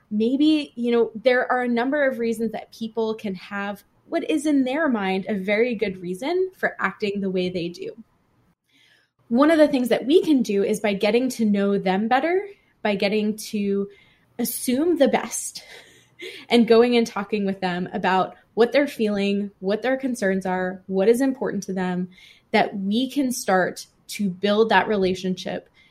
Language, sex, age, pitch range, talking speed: English, female, 20-39, 195-235 Hz, 175 wpm